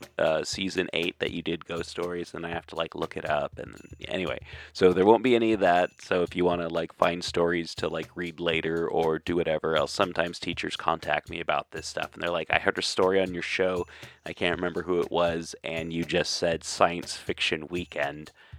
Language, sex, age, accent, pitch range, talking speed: English, male, 30-49, American, 85-110 Hz, 230 wpm